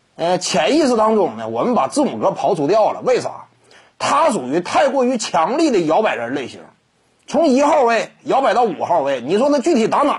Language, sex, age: Chinese, male, 30-49